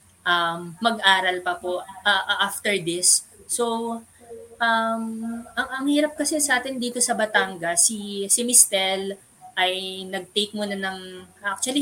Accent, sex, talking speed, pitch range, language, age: native, female, 135 wpm, 185-230 Hz, Filipino, 20-39